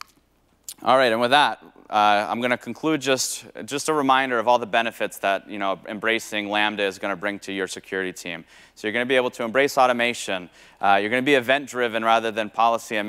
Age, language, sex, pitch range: 30-49, English, male, 105-125 Hz